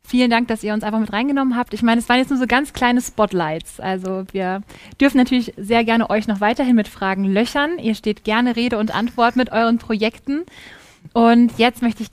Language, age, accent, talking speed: German, 20-39, German, 220 wpm